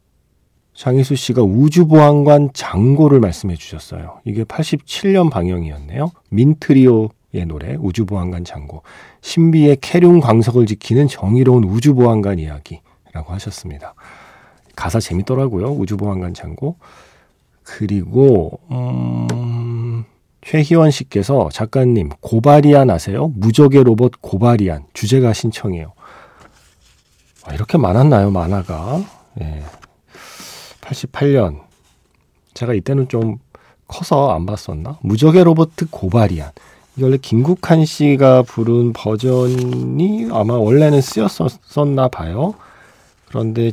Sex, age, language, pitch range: male, 40-59, Korean, 95-140 Hz